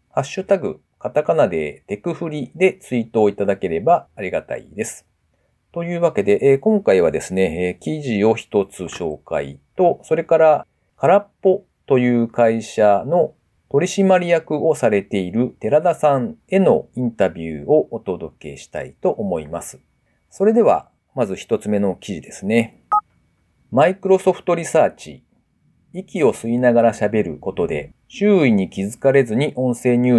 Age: 40-59